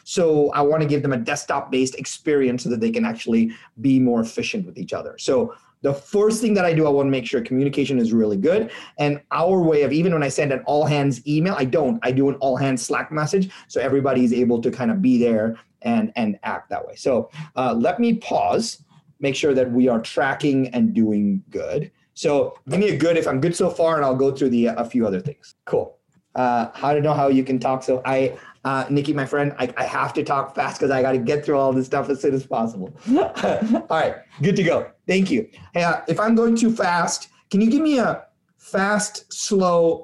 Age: 30-49